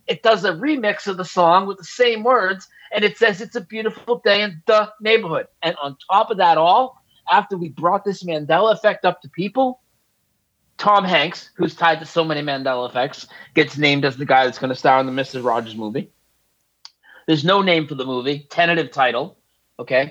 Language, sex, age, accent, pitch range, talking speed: English, male, 30-49, American, 140-200 Hz, 205 wpm